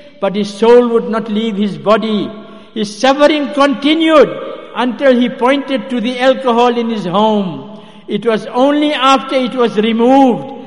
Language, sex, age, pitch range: English, male, 60-79, 220-270 Hz